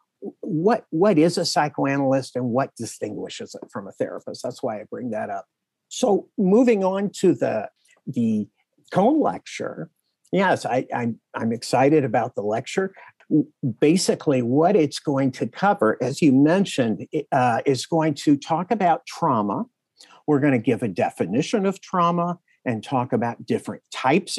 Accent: American